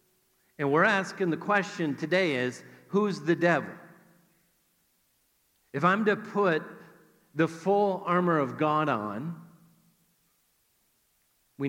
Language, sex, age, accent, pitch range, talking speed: English, male, 50-69, American, 155-190 Hz, 110 wpm